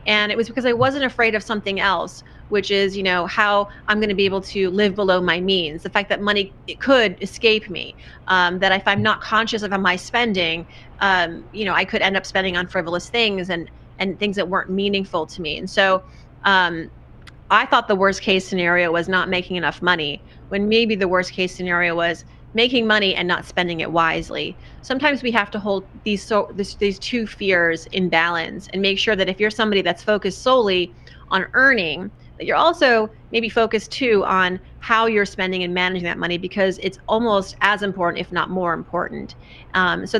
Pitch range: 180-210 Hz